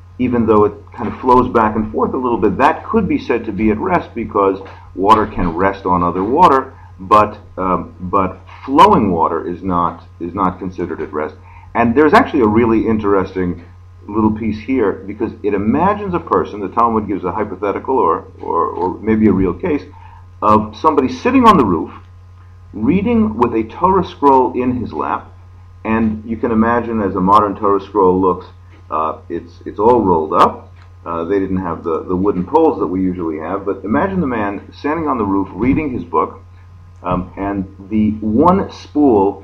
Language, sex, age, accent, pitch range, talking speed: English, male, 40-59, American, 90-110 Hz, 185 wpm